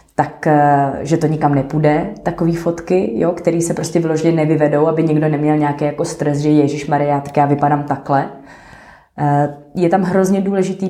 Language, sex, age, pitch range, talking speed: Slovak, female, 20-39, 145-170 Hz, 165 wpm